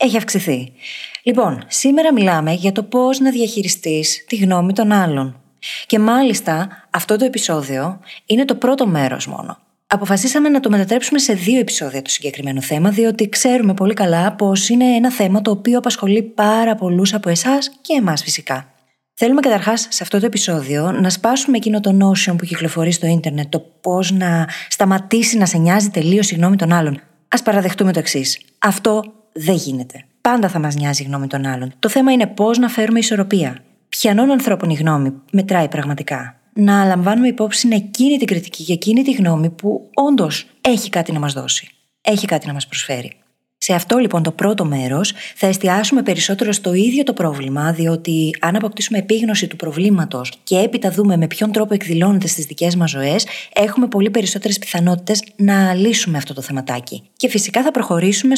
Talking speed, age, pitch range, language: 175 wpm, 20-39, 165-225 Hz, Greek